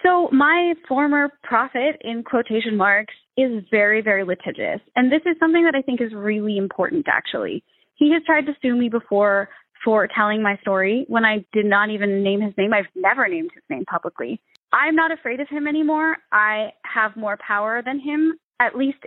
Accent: American